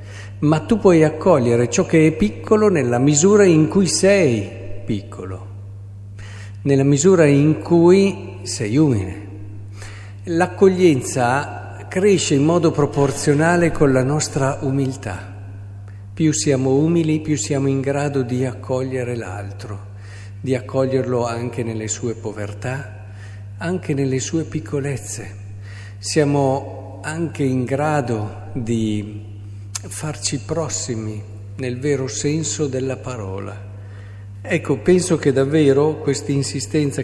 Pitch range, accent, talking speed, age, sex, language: 100-140 Hz, native, 110 wpm, 50-69, male, Italian